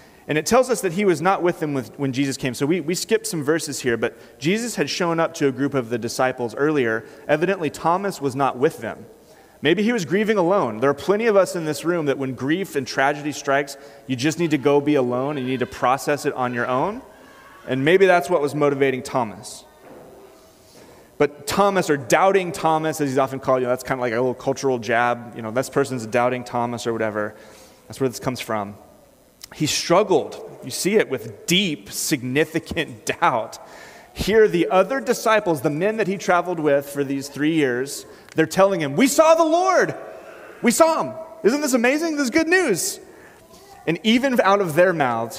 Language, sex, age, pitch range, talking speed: English, male, 30-49, 135-190 Hz, 210 wpm